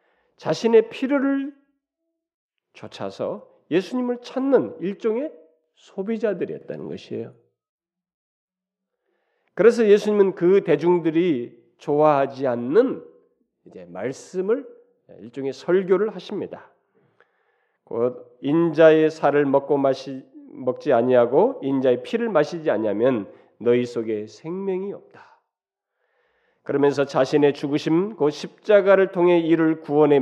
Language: Korean